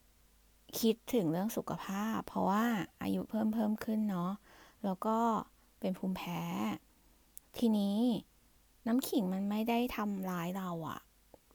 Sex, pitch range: female, 185-235 Hz